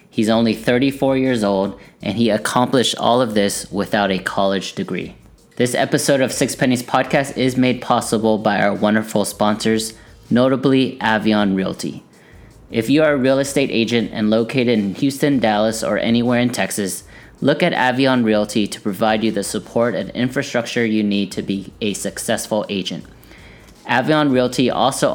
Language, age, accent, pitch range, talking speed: English, 20-39, American, 105-130 Hz, 160 wpm